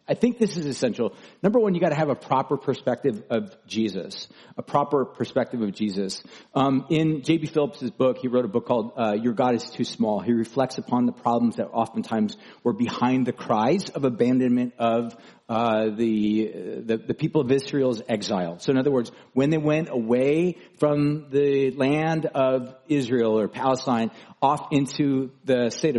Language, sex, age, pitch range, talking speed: English, male, 40-59, 125-170 Hz, 180 wpm